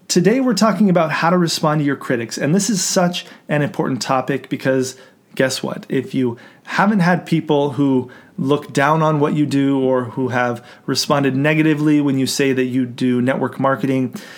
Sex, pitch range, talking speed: male, 135-180 Hz, 190 wpm